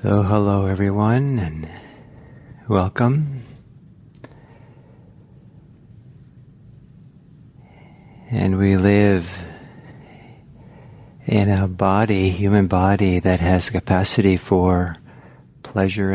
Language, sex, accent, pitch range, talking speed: English, male, American, 95-130 Hz, 65 wpm